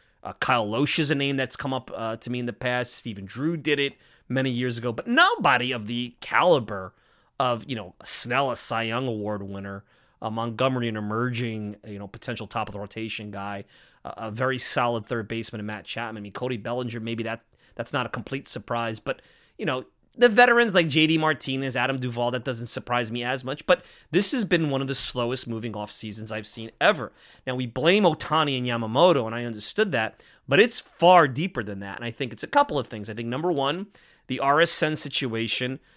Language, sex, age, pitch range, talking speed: English, male, 30-49, 115-155 Hz, 215 wpm